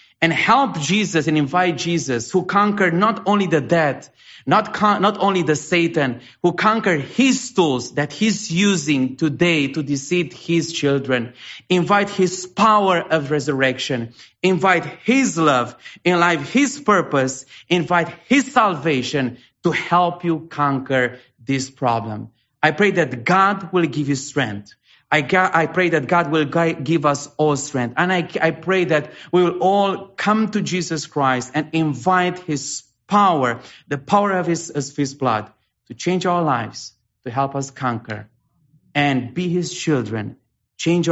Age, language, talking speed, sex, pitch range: 30-49, English, 155 wpm, male, 125-175 Hz